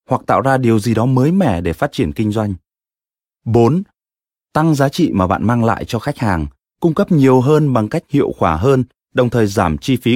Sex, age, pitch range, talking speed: male, 20-39, 95-130 Hz, 225 wpm